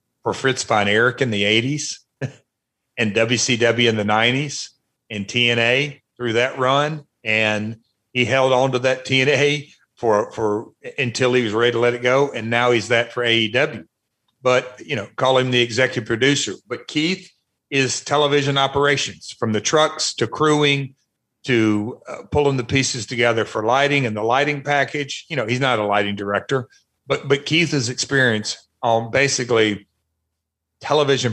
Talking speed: 165 wpm